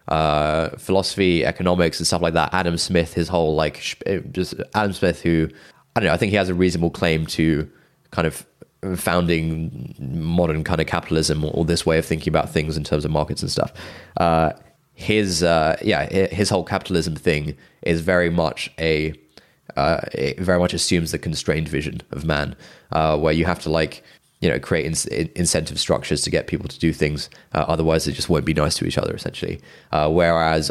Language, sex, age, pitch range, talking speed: English, male, 20-39, 80-90 Hz, 195 wpm